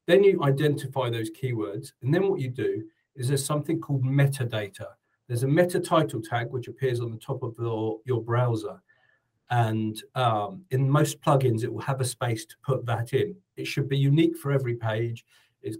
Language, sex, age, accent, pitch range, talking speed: English, male, 40-59, British, 115-140 Hz, 195 wpm